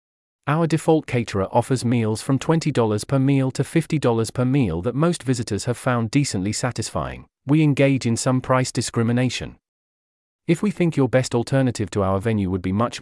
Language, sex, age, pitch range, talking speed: English, male, 40-59, 105-140 Hz, 175 wpm